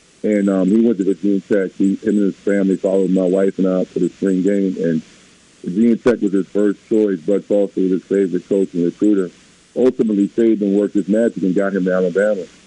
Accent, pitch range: American, 100-120 Hz